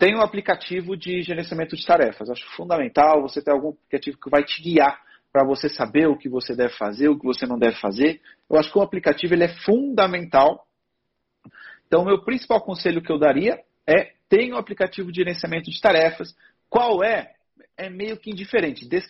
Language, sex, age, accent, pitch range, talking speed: Portuguese, male, 40-59, Brazilian, 150-195 Hz, 195 wpm